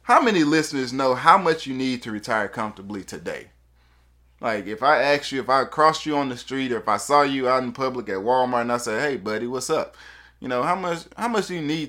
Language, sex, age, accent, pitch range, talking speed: English, male, 20-39, American, 110-140 Hz, 250 wpm